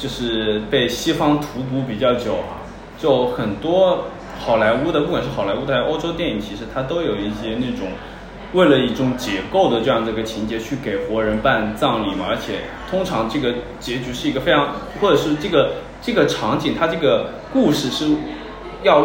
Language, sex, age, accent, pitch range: Chinese, male, 20-39, native, 115-190 Hz